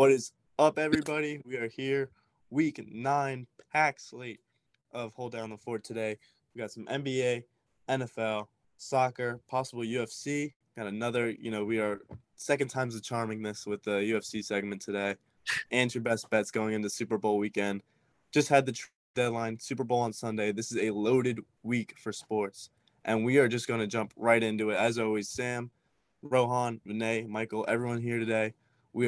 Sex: male